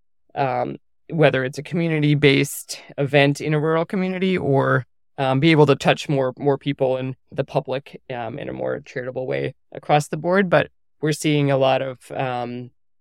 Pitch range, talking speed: 130-150 Hz, 180 wpm